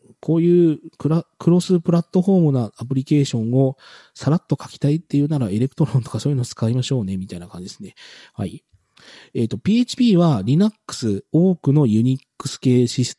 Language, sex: Japanese, male